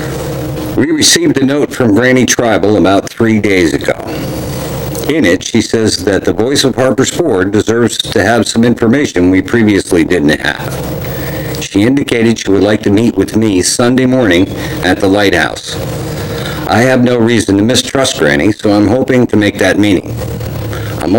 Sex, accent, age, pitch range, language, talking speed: male, American, 60-79, 100-130 Hz, English, 165 wpm